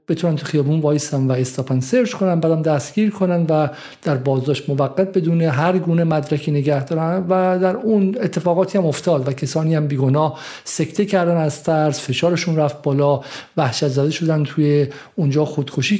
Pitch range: 140-175 Hz